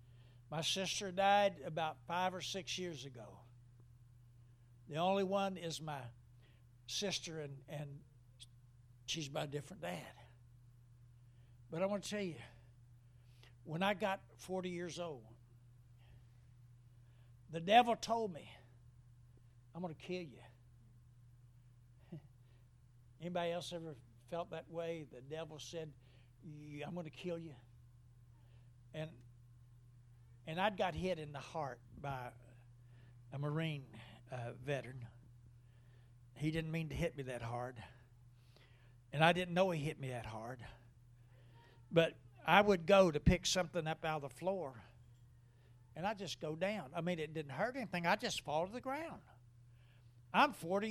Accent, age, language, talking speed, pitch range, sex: American, 60-79, English, 140 wpm, 120-175 Hz, male